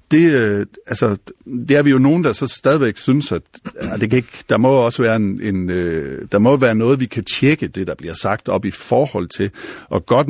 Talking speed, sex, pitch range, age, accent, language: 235 wpm, male, 100-130 Hz, 60-79, native, Danish